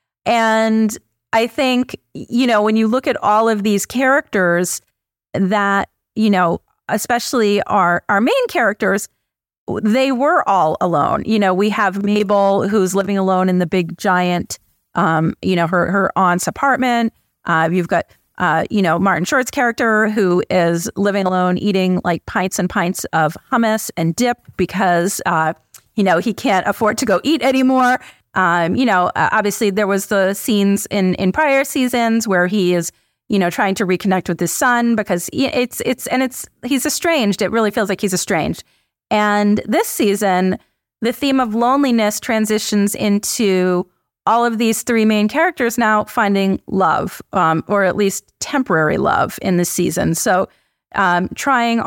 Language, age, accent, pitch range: English, 40-59, American, 185-230 Hz